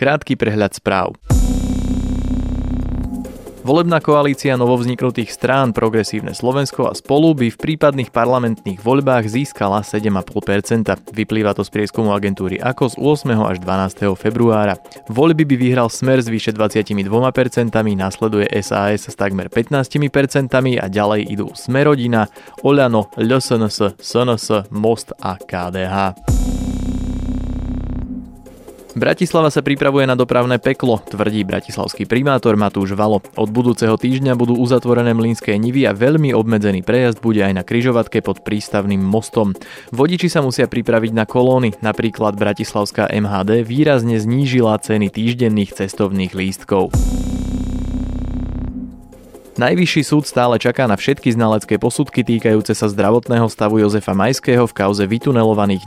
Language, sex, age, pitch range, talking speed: Slovak, male, 20-39, 100-125 Hz, 120 wpm